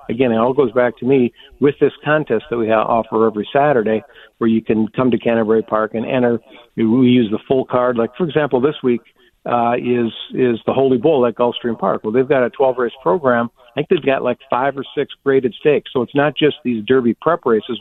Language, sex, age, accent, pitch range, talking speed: English, male, 50-69, American, 110-130 Hz, 235 wpm